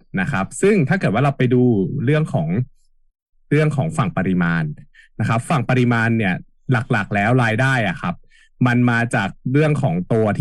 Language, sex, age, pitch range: Thai, male, 20-39, 110-145 Hz